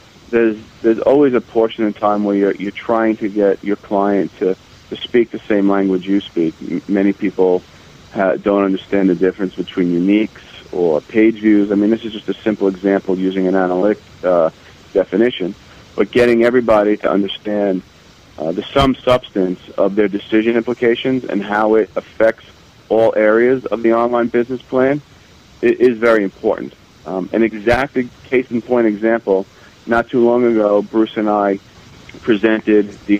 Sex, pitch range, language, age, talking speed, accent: male, 95-115 Hz, English, 40-59, 165 wpm, American